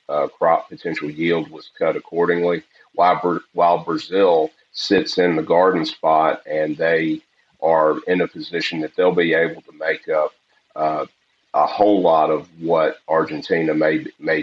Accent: American